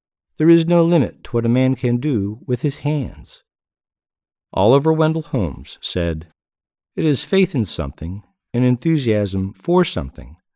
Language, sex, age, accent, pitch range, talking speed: English, male, 60-79, American, 85-120 Hz, 150 wpm